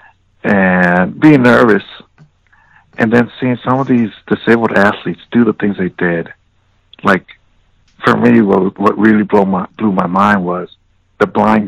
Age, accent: 60-79, American